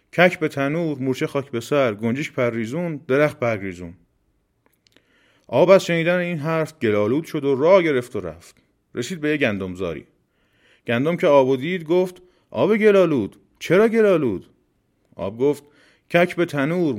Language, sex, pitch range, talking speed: Persian, male, 125-170 Hz, 135 wpm